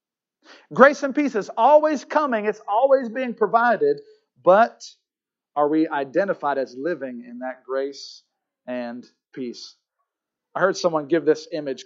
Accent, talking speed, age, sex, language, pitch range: American, 135 wpm, 40-59, male, English, 160-270 Hz